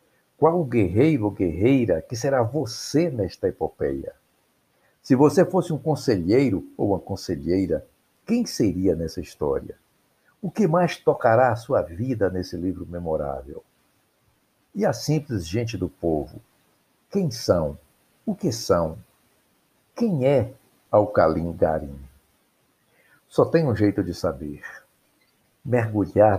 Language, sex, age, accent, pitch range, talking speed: Portuguese, male, 60-79, Brazilian, 90-130 Hz, 125 wpm